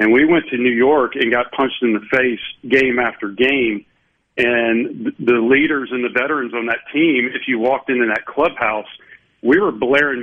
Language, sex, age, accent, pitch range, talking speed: English, male, 40-59, American, 120-145 Hz, 195 wpm